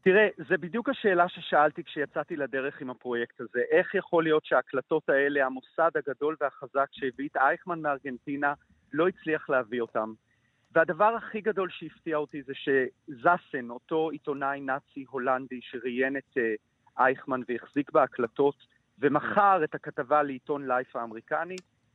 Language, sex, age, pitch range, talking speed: Hebrew, male, 40-59, 130-170 Hz, 130 wpm